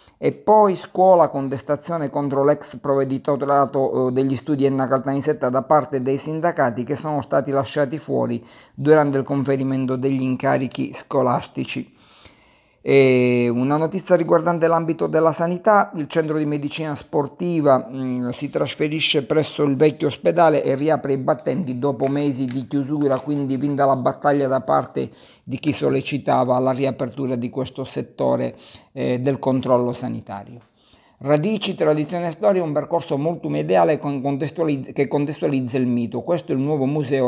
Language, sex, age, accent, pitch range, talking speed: Italian, male, 50-69, native, 130-150 Hz, 135 wpm